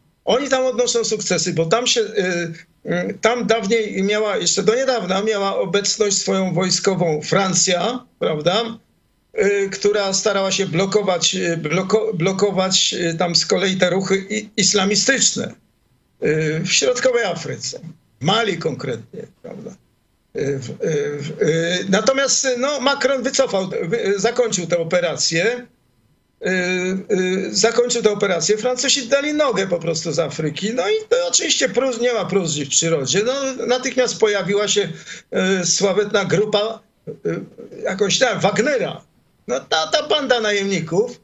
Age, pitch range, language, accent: 50-69, 180-245 Hz, Polish, native